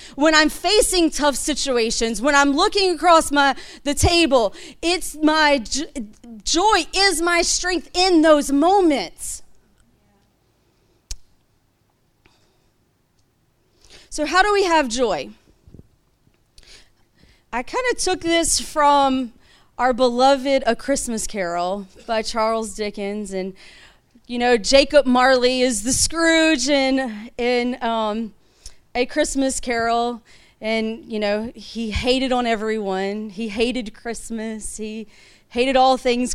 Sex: female